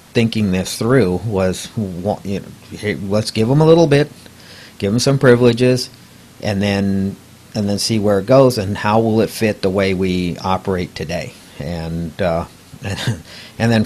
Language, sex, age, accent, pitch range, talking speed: English, male, 50-69, American, 95-130 Hz, 165 wpm